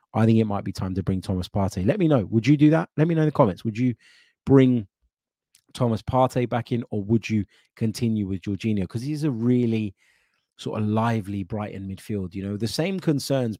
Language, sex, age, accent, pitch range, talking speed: English, male, 20-39, British, 100-125 Hz, 220 wpm